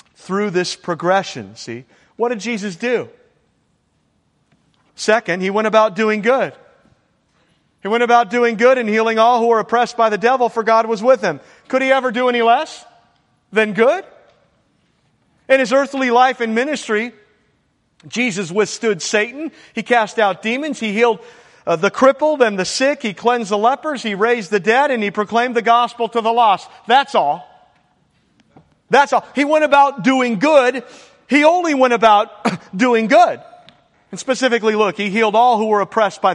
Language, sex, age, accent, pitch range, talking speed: English, male, 40-59, American, 205-245 Hz, 170 wpm